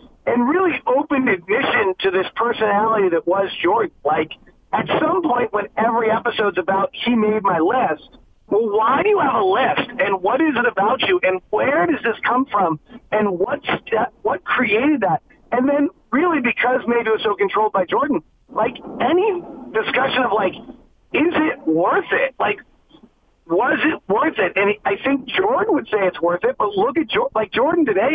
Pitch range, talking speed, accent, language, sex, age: 195-280 Hz, 190 wpm, American, English, male, 40-59